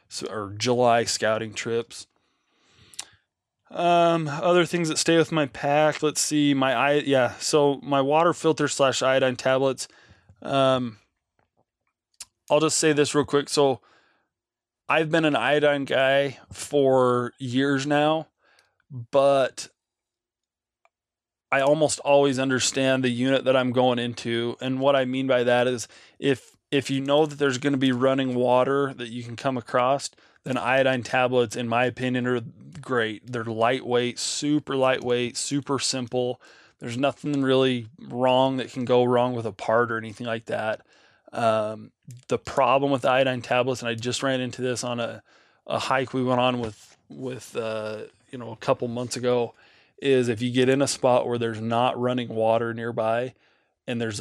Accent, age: American, 20-39